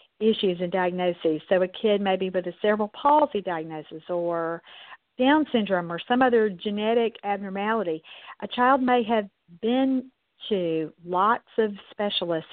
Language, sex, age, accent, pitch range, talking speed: English, female, 50-69, American, 175-225 Hz, 140 wpm